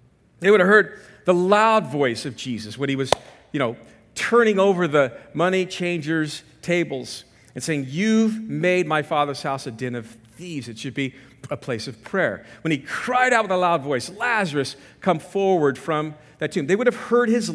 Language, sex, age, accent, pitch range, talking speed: English, male, 50-69, American, 125-170 Hz, 195 wpm